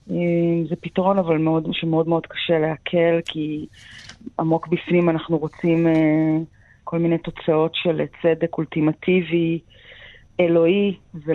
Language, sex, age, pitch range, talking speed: Hebrew, female, 20-39, 165-205 Hz, 115 wpm